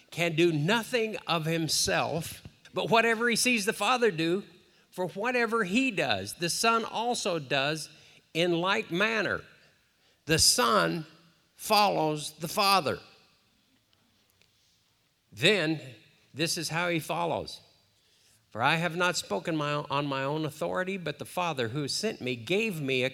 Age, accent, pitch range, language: 50-69, American, 105-165 Hz, English